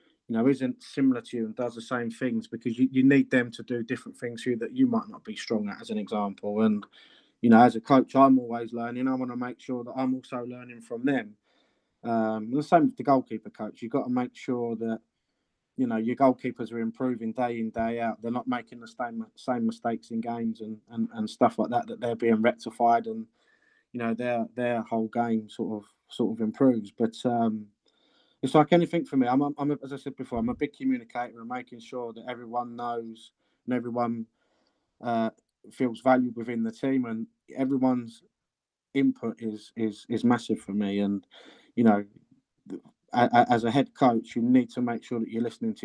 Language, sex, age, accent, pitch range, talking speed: English, male, 20-39, British, 115-130 Hz, 215 wpm